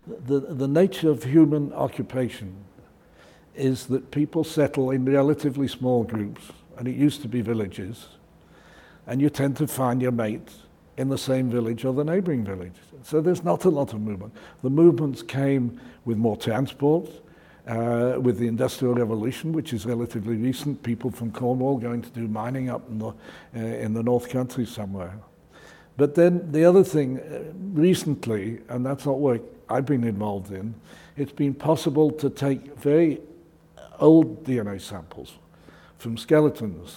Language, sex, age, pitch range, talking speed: English, male, 60-79, 115-150 Hz, 160 wpm